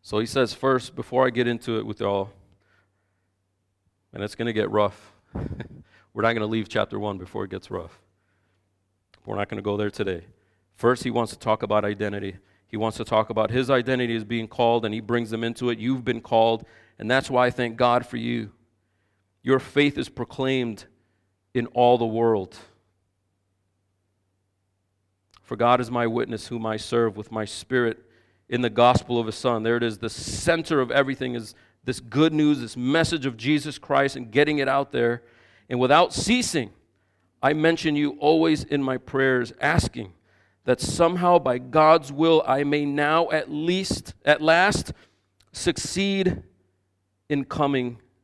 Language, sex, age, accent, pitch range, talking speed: English, male, 40-59, American, 100-130 Hz, 175 wpm